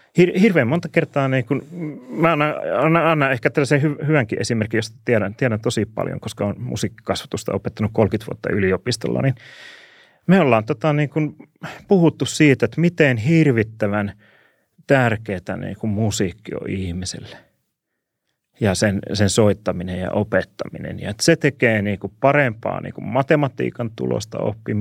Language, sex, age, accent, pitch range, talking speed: Finnish, male, 30-49, native, 100-130 Hz, 140 wpm